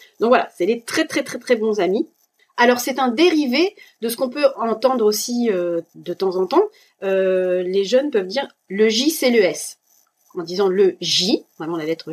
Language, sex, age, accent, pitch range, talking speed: French, female, 30-49, French, 185-270 Hz, 220 wpm